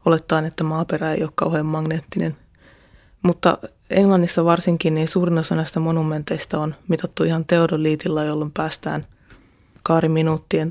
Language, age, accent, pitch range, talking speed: Finnish, 20-39, native, 155-185 Hz, 125 wpm